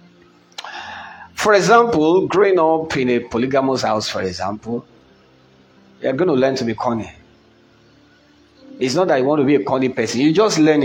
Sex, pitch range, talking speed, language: male, 115-170 Hz, 165 wpm, English